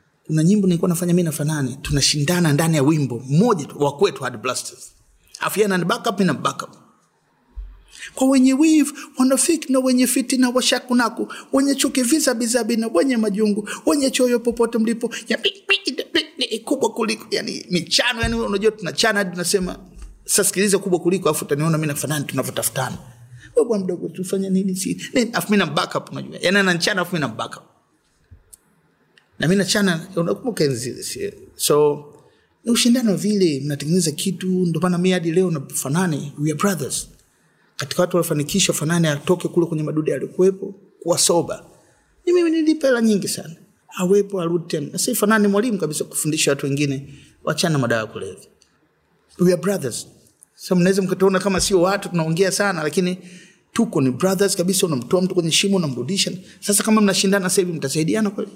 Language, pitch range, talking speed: Swahili, 160-220 Hz, 105 wpm